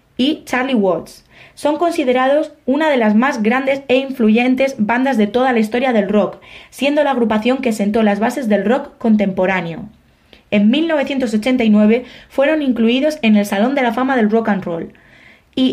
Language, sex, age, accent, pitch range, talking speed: Spanish, female, 20-39, Spanish, 210-265 Hz, 170 wpm